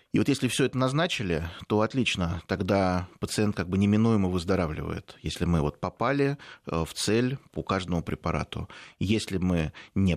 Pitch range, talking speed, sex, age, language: 85-110 Hz, 155 wpm, male, 30-49, Russian